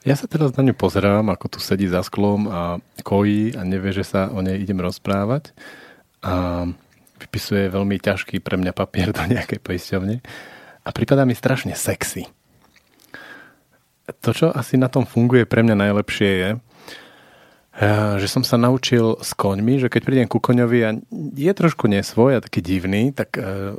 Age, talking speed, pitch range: 40-59, 165 wpm, 95-120 Hz